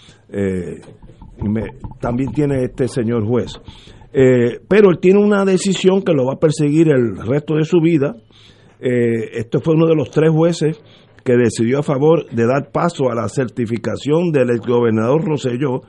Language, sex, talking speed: Spanish, male, 165 wpm